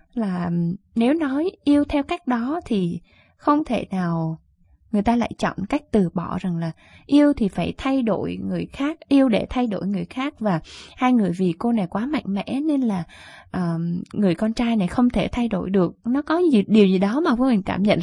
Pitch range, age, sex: 185-250 Hz, 20-39, female